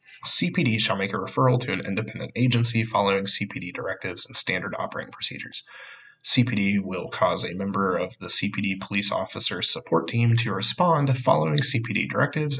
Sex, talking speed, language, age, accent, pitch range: male, 155 wpm, English, 20-39, American, 105-130 Hz